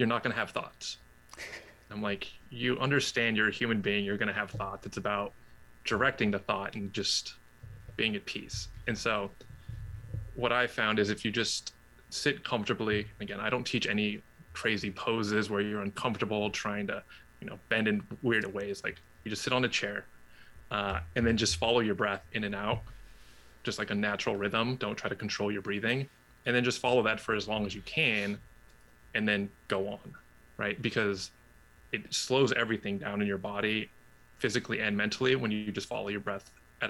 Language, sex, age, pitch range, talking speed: English, male, 20-39, 95-110 Hz, 190 wpm